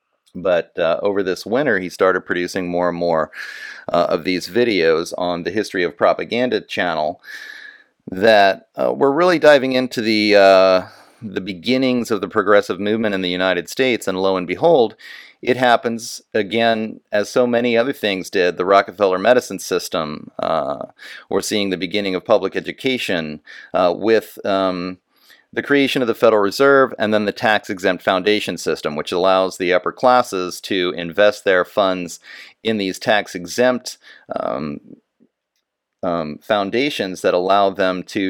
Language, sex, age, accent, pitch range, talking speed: English, male, 40-59, American, 95-125 Hz, 155 wpm